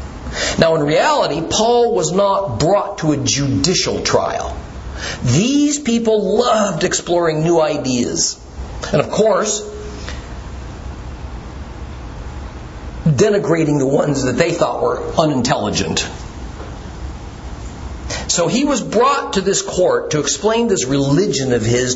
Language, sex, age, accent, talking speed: English, male, 50-69, American, 110 wpm